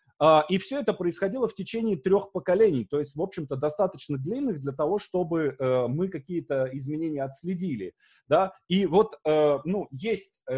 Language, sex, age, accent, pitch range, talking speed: Russian, male, 30-49, native, 130-185 Hz, 145 wpm